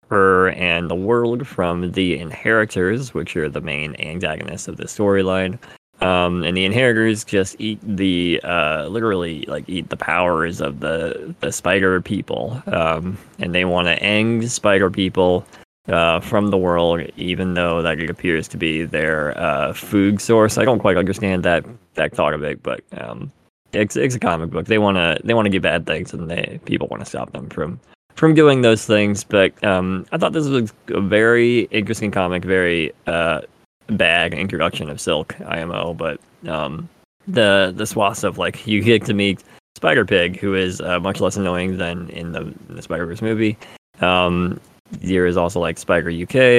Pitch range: 90-110 Hz